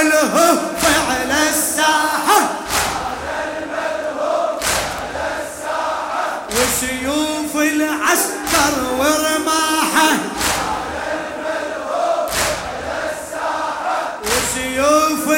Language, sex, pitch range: Arabic, male, 305-385 Hz